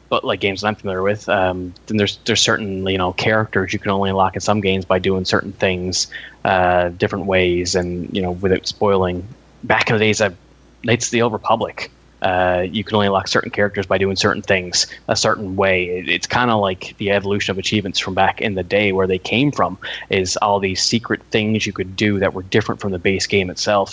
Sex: male